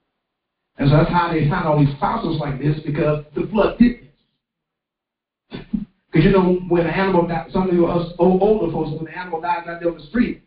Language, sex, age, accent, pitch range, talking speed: English, male, 50-69, American, 155-210 Hz, 225 wpm